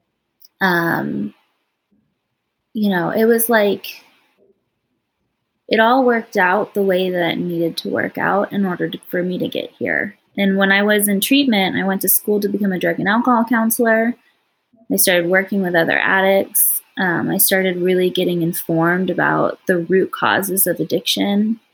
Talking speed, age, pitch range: 170 wpm, 20-39, 180-215 Hz